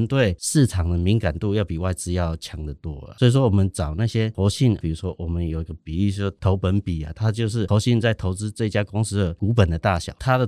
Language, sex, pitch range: Chinese, male, 85-110 Hz